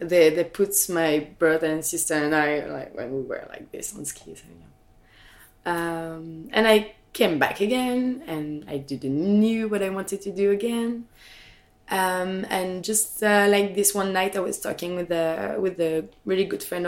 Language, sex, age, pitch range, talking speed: English, female, 20-39, 160-195 Hz, 190 wpm